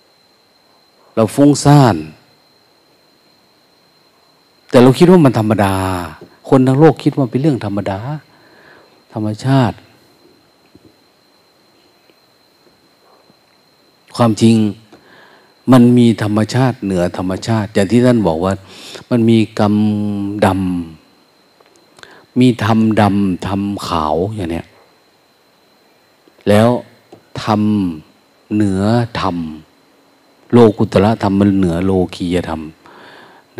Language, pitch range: Thai, 95-120 Hz